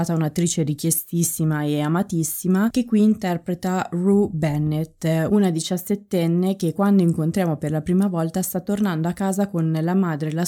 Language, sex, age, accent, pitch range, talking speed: Italian, female, 20-39, native, 155-190 Hz, 155 wpm